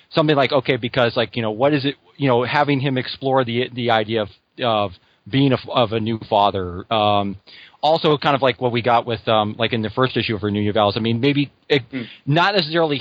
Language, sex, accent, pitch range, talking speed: English, male, American, 110-135 Hz, 220 wpm